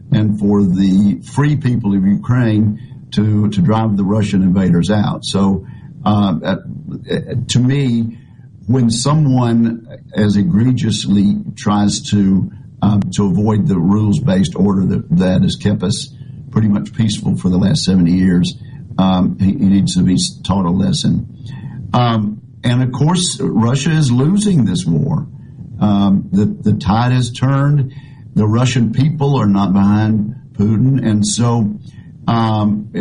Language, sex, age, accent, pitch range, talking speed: English, male, 50-69, American, 100-130 Hz, 140 wpm